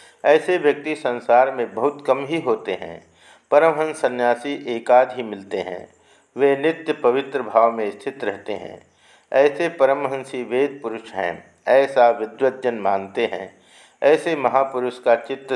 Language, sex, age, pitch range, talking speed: Hindi, male, 50-69, 115-135 Hz, 140 wpm